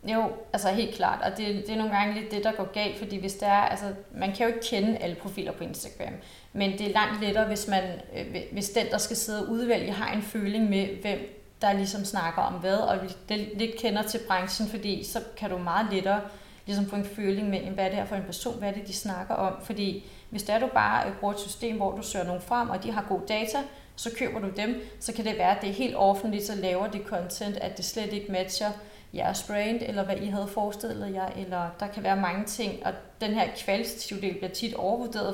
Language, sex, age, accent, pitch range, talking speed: Danish, female, 30-49, native, 190-220 Hz, 240 wpm